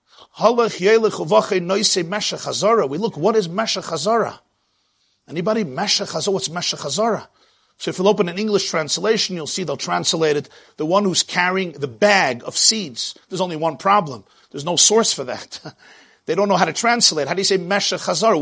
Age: 50-69